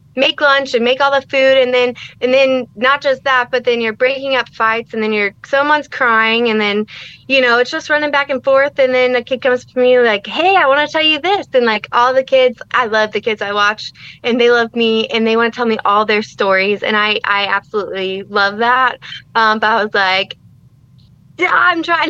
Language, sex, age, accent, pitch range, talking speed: English, female, 20-39, American, 215-255 Hz, 240 wpm